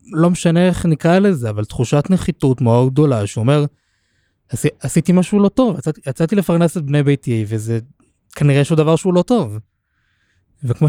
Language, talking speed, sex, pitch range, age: Hebrew, 160 wpm, male, 125-170 Hz, 20-39